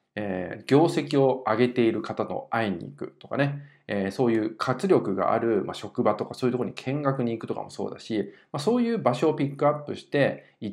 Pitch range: 110-155 Hz